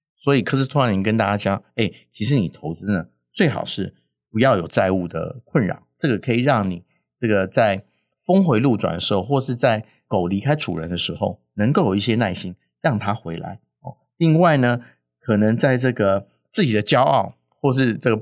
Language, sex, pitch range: Chinese, male, 100-130 Hz